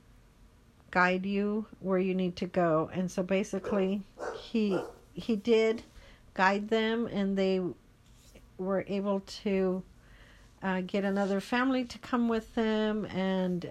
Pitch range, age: 180-205 Hz, 50-69